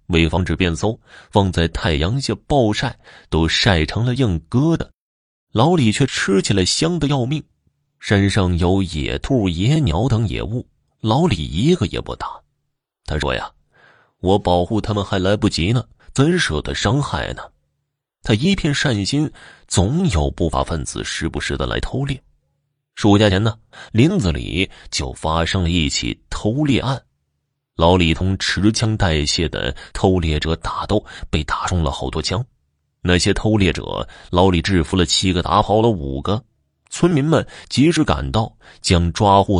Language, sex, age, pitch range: Chinese, male, 20-39, 80-115 Hz